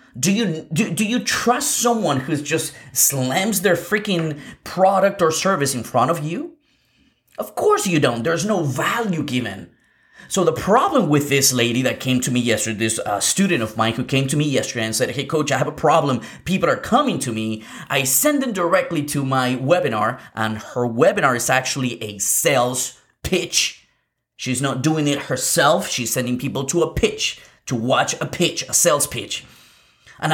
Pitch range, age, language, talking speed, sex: 125-190 Hz, 30-49, English, 190 wpm, male